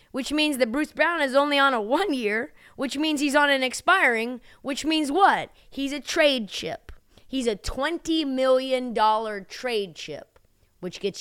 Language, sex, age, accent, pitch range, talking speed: English, female, 20-39, American, 190-255 Hz, 165 wpm